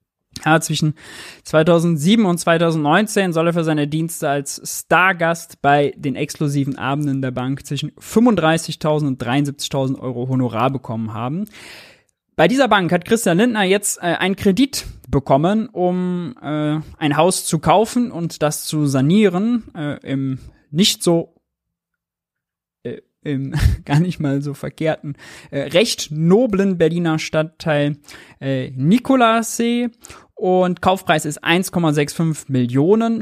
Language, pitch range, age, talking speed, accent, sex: German, 140-180 Hz, 20-39, 125 wpm, German, male